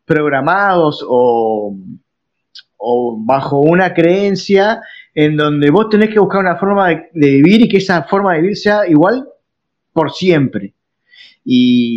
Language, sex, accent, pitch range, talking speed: Spanish, male, Argentinian, 135-190 Hz, 140 wpm